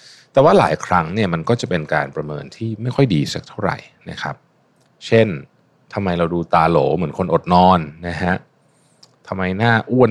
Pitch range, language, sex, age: 90-125 Hz, Thai, male, 20-39